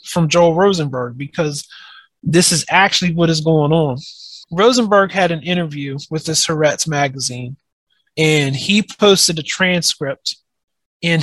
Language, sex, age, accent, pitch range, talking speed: English, male, 30-49, American, 150-180 Hz, 135 wpm